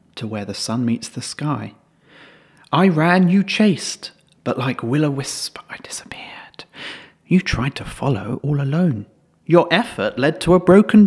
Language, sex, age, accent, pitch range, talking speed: English, male, 40-59, British, 120-190 Hz, 150 wpm